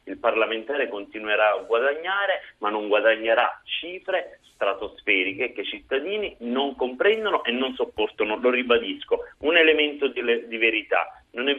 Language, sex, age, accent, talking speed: Italian, male, 40-59, native, 140 wpm